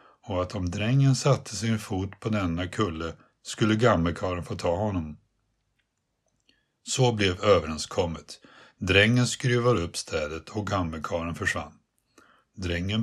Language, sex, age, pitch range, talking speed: Swedish, male, 60-79, 90-115 Hz, 120 wpm